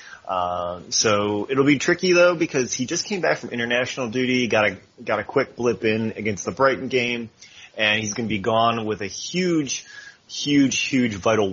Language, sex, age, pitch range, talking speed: English, male, 30-49, 105-130 Hz, 200 wpm